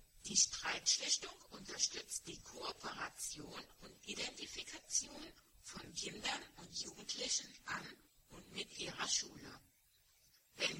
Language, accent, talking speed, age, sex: German, German, 95 wpm, 60-79, female